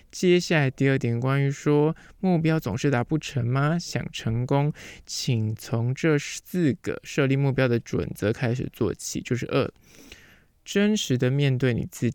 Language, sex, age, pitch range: Chinese, male, 20-39, 125-160 Hz